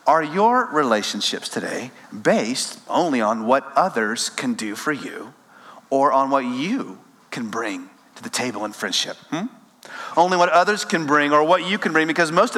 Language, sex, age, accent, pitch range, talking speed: English, male, 40-59, American, 190-255 Hz, 175 wpm